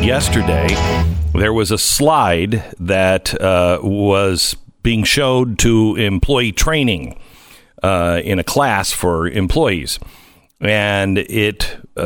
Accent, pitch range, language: American, 95-125 Hz, English